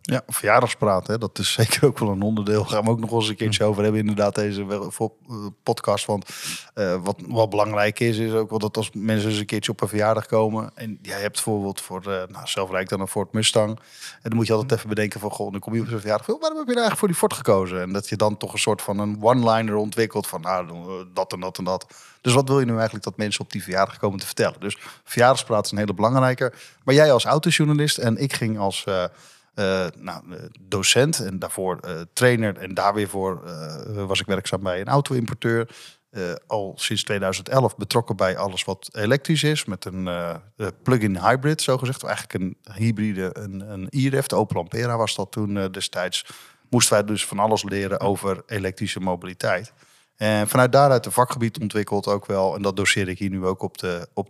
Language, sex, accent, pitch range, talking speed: Dutch, male, Dutch, 100-120 Hz, 220 wpm